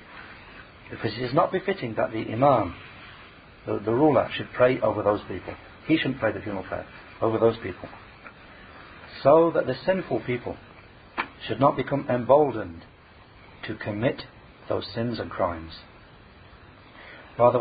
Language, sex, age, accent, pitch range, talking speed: English, male, 60-79, British, 100-130 Hz, 140 wpm